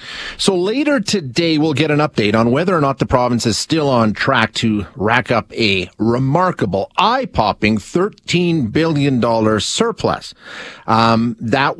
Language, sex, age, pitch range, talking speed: English, male, 40-59, 110-150 Hz, 140 wpm